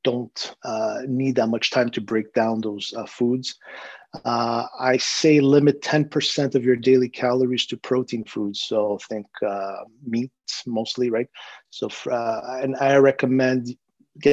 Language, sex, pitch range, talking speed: English, male, 110-135 Hz, 155 wpm